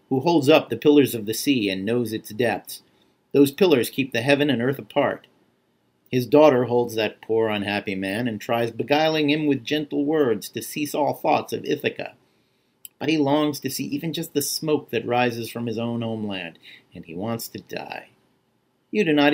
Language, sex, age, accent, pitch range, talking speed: English, male, 40-59, American, 115-150 Hz, 195 wpm